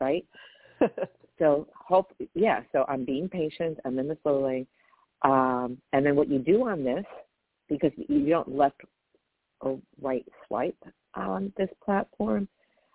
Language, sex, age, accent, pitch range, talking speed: English, female, 50-69, American, 130-160 Hz, 140 wpm